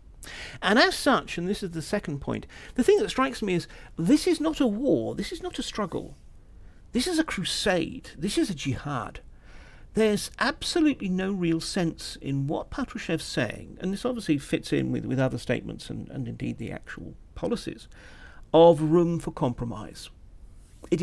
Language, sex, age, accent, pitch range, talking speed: English, male, 50-69, British, 125-170 Hz, 175 wpm